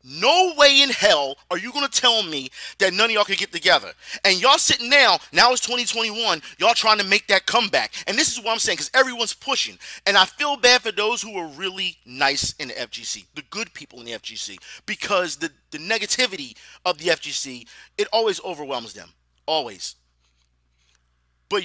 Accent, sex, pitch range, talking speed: American, male, 170-255 Hz, 195 wpm